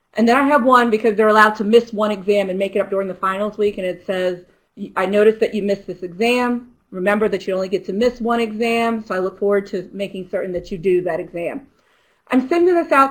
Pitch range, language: 190-235 Hz, English